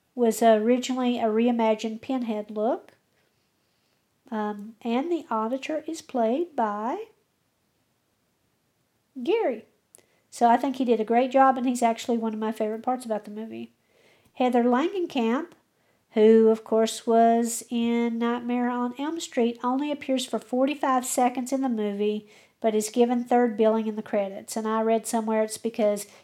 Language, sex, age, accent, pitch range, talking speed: English, female, 50-69, American, 220-255 Hz, 150 wpm